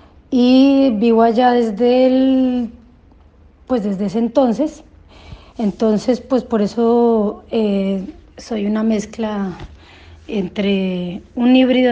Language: Spanish